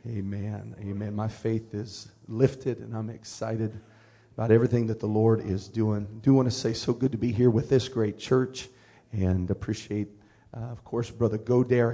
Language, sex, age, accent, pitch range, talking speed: English, male, 40-59, American, 110-125 Hz, 180 wpm